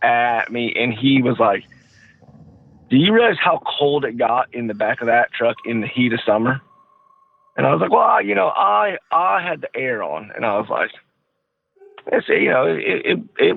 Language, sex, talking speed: English, male, 210 wpm